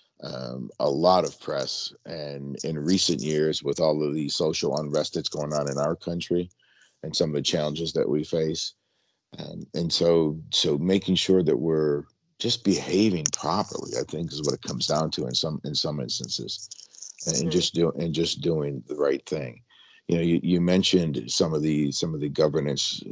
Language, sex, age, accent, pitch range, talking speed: English, male, 50-69, American, 70-85 Hz, 195 wpm